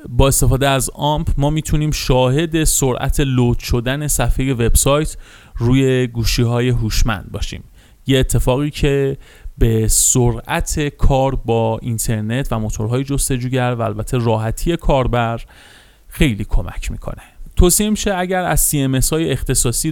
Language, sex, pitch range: Persian, male, 120-150 Hz